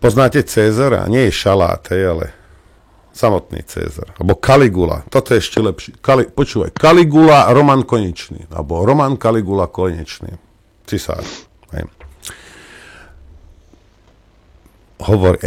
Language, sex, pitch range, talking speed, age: Slovak, male, 85-115 Hz, 110 wpm, 50-69